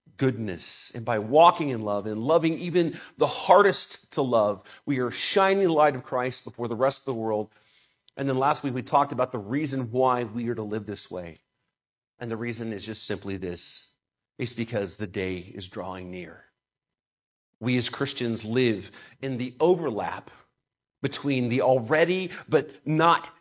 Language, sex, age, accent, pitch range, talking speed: English, male, 40-59, American, 125-210 Hz, 175 wpm